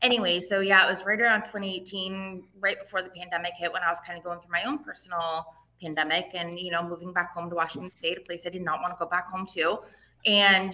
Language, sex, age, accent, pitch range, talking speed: English, female, 20-39, American, 175-210 Hz, 250 wpm